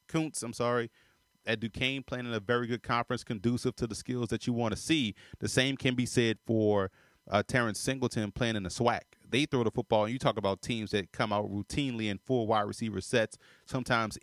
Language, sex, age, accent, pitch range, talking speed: English, male, 30-49, American, 105-125 Hz, 215 wpm